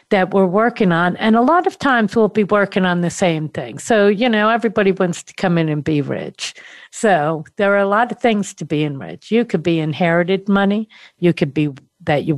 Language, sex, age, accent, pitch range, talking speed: English, female, 60-79, American, 170-210 Hz, 230 wpm